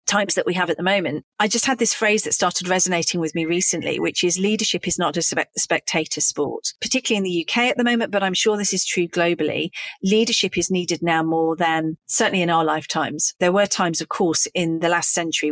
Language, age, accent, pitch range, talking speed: English, 40-59, British, 160-185 Hz, 230 wpm